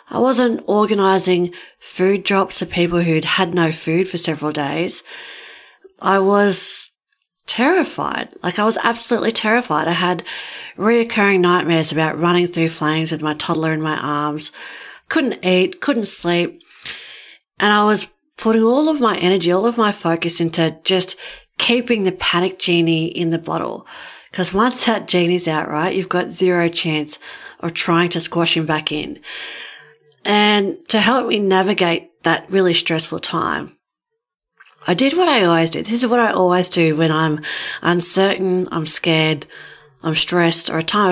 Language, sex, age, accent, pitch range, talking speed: English, female, 40-59, Australian, 160-205 Hz, 160 wpm